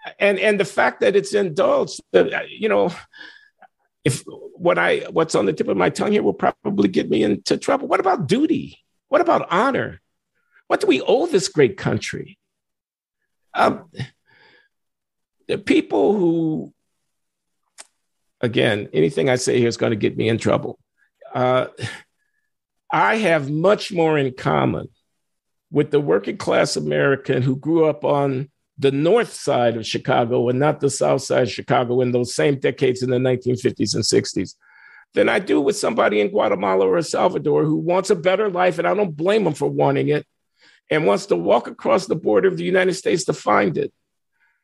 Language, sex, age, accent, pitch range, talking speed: English, male, 50-69, American, 130-210 Hz, 170 wpm